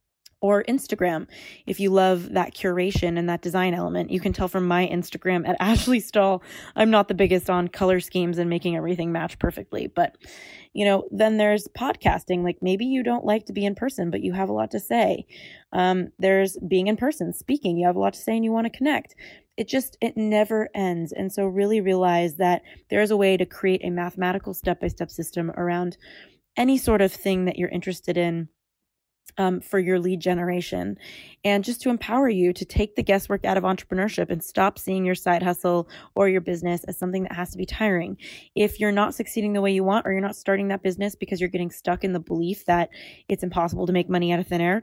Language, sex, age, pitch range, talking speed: English, female, 20-39, 175-205 Hz, 220 wpm